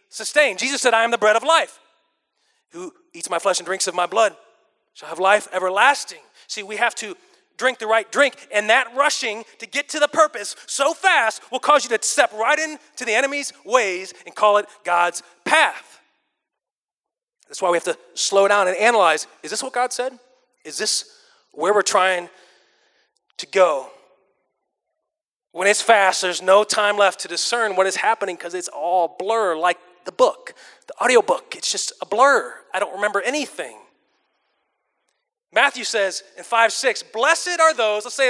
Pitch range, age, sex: 205-300 Hz, 30-49, male